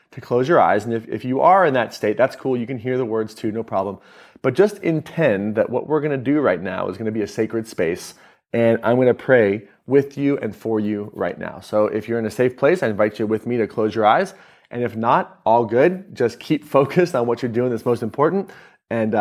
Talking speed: 260 wpm